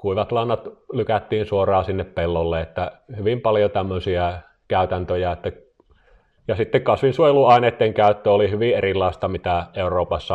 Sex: male